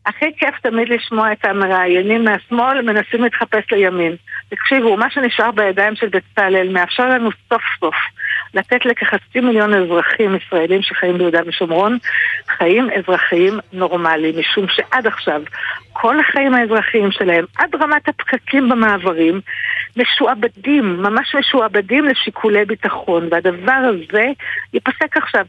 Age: 60-79